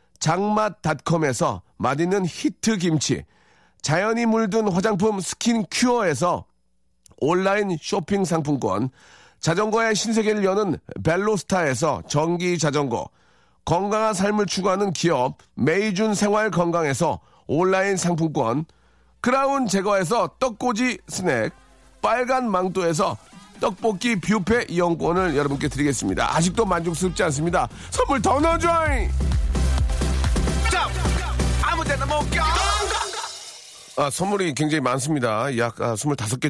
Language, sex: Korean, male